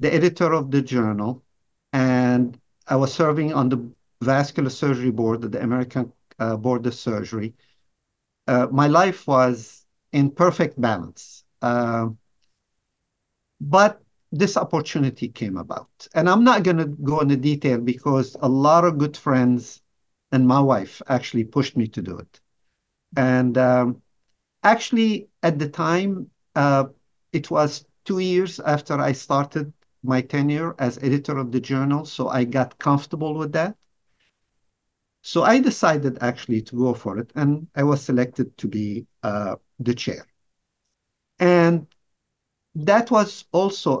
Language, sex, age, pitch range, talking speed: English, male, 50-69, 120-155 Hz, 140 wpm